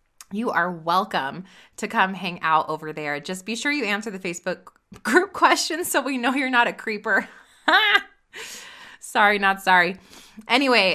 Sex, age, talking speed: female, 20-39, 160 wpm